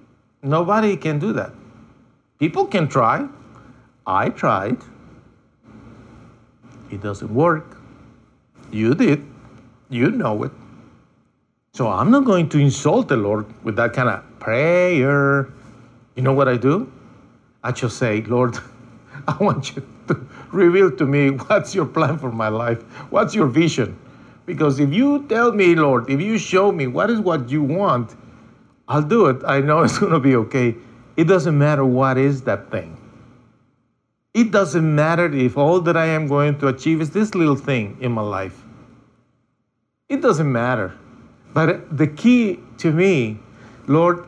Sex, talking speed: male, 155 wpm